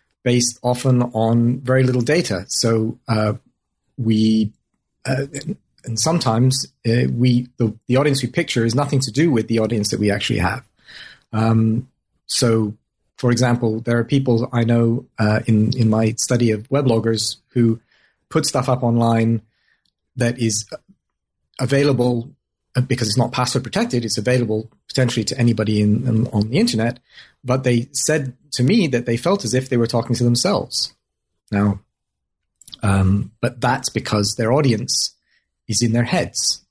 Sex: male